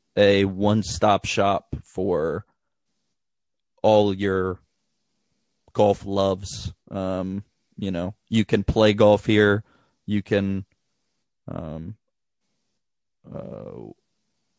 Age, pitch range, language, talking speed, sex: 20-39, 100-110 Hz, English, 85 wpm, male